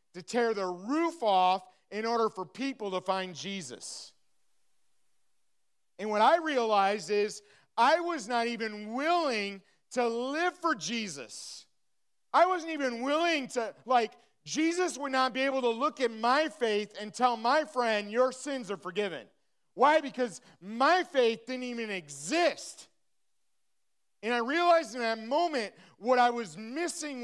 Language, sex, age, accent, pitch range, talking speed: English, male, 40-59, American, 210-275 Hz, 150 wpm